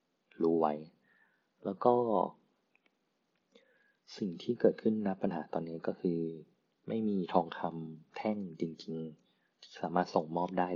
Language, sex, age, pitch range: Thai, male, 20-39, 80-95 Hz